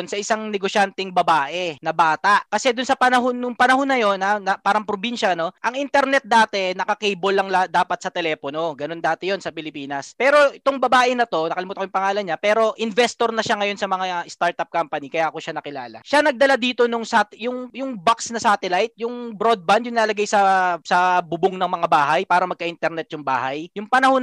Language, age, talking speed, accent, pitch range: Filipino, 20-39, 205 wpm, native, 175-235 Hz